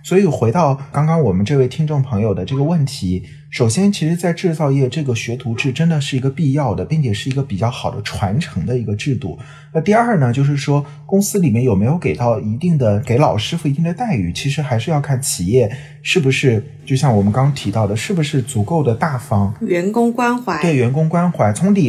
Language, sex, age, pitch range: Chinese, male, 30-49, 115-155 Hz